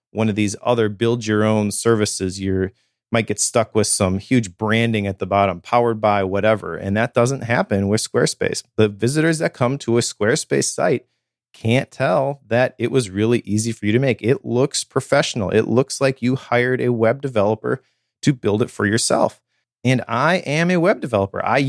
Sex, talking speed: male, 195 wpm